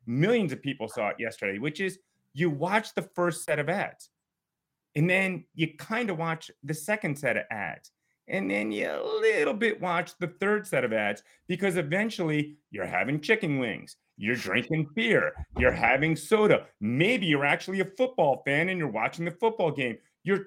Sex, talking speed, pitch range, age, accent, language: male, 185 wpm, 150-195 Hz, 30-49, American, English